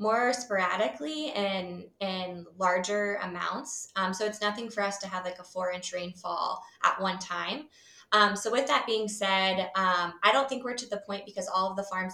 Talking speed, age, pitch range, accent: 205 wpm, 20-39, 180-205 Hz, American